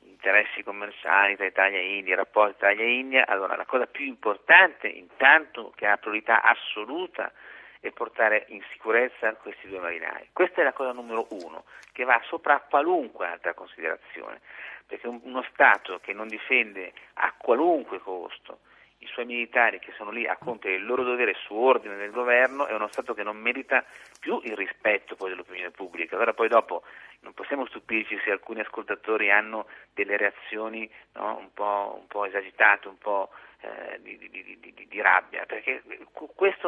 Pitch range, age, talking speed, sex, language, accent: 110-170 Hz, 50-69, 175 wpm, male, Italian, native